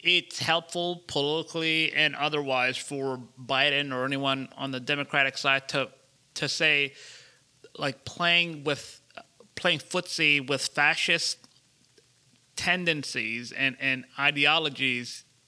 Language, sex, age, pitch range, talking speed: English, male, 30-49, 135-165 Hz, 105 wpm